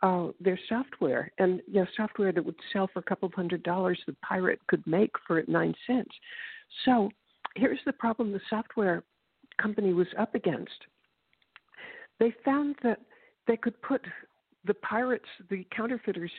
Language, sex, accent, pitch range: English, female, American, 200-270 Hz